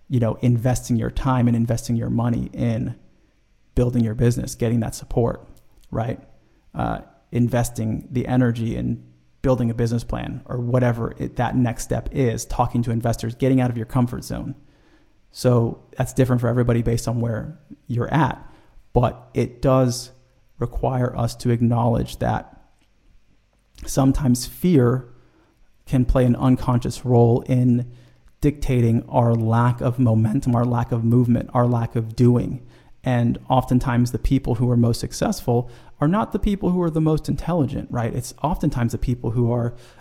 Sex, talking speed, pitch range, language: male, 155 wpm, 120-130 Hz, English